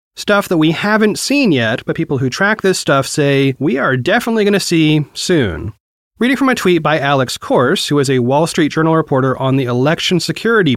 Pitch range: 135-190 Hz